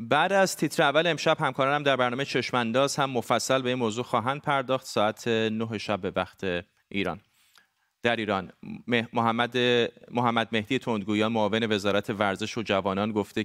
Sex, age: male, 30-49